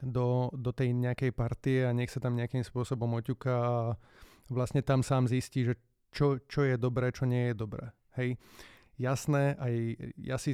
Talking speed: 175 wpm